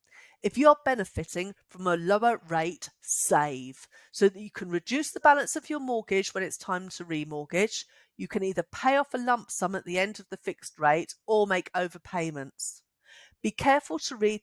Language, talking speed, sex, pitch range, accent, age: English, 190 wpm, female, 160-235 Hz, British, 50-69